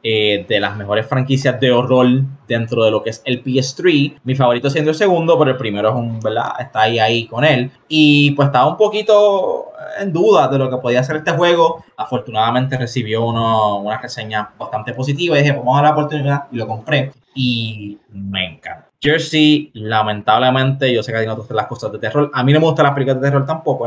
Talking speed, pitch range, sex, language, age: 205 wpm, 115-145 Hz, male, English, 20-39